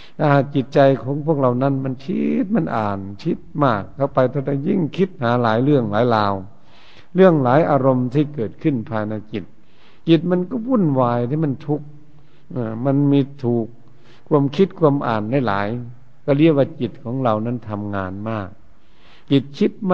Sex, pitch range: male, 115-150 Hz